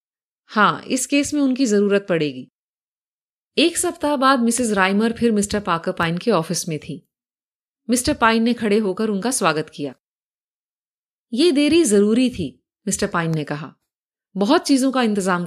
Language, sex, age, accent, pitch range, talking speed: Hindi, female, 30-49, native, 190-270 Hz, 155 wpm